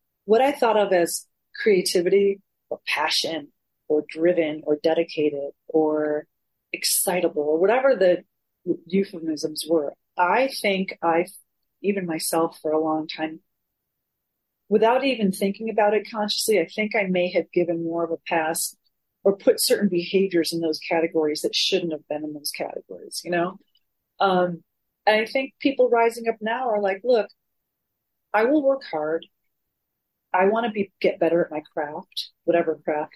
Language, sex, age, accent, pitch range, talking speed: English, female, 40-59, American, 160-210 Hz, 155 wpm